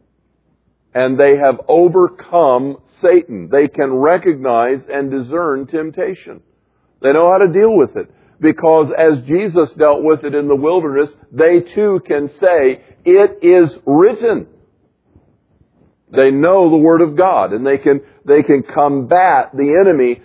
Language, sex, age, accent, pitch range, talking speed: English, male, 50-69, American, 120-160 Hz, 140 wpm